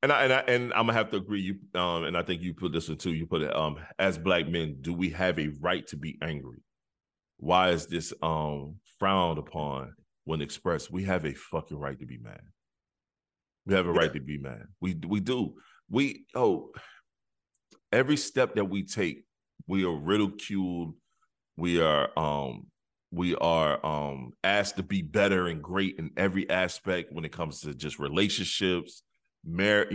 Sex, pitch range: male, 80-105 Hz